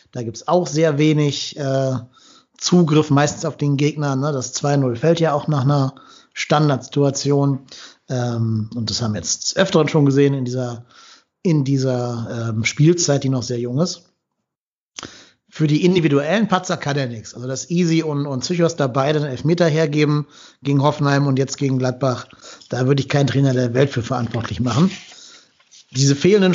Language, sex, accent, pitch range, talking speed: German, male, German, 135-160 Hz, 175 wpm